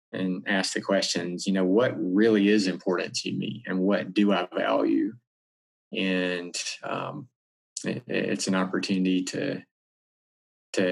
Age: 20-39